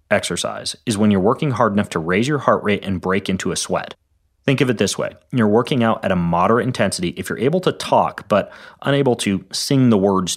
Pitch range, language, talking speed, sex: 90-125 Hz, English, 230 wpm, male